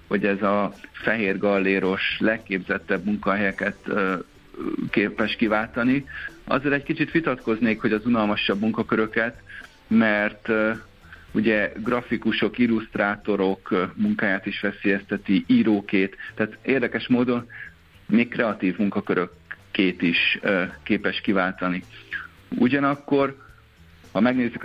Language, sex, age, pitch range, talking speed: Hungarian, male, 50-69, 100-115 Hz, 90 wpm